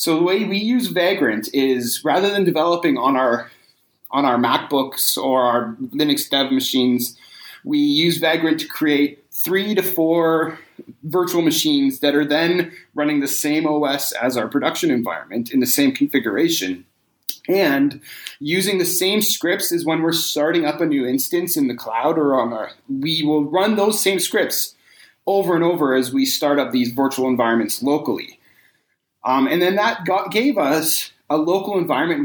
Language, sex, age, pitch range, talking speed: English, male, 30-49, 135-185 Hz, 165 wpm